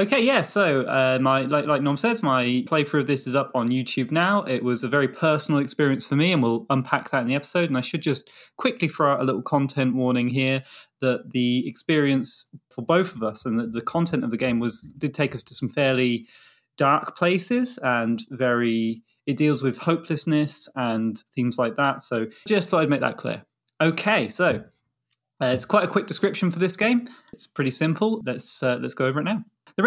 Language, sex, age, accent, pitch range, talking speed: English, male, 20-39, British, 125-165 Hz, 215 wpm